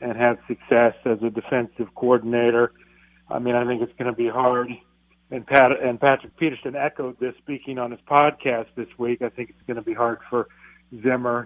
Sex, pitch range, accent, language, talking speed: male, 120-140 Hz, American, English, 200 wpm